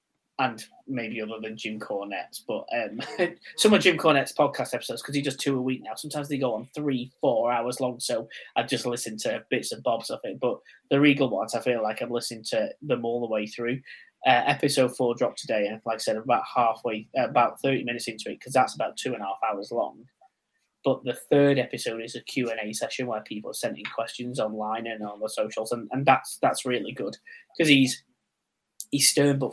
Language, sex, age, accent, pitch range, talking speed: English, male, 20-39, British, 115-135 Hz, 230 wpm